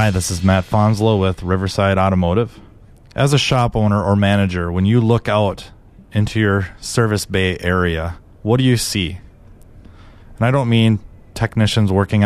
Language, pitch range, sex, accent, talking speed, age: English, 95-115 Hz, male, American, 160 wpm, 30-49